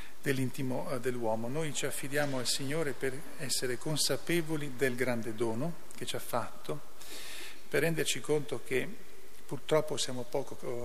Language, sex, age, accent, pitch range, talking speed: Italian, male, 40-59, native, 125-145 Hz, 135 wpm